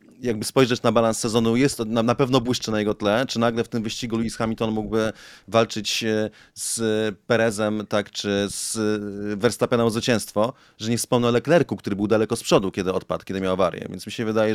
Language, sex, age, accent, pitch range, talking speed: Polish, male, 30-49, native, 105-115 Hz, 200 wpm